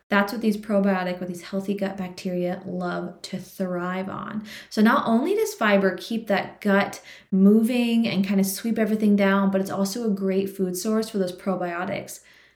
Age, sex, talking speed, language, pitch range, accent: 20-39, female, 180 wpm, English, 180-215 Hz, American